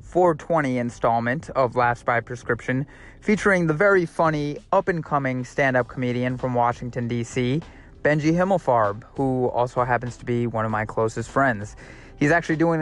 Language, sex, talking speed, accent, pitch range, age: English, male, 160 wpm, American, 130-170 Hz, 20-39